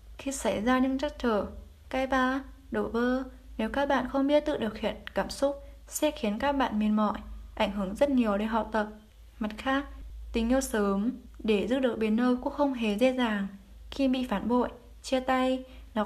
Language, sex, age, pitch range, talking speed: Vietnamese, female, 20-39, 215-260 Hz, 205 wpm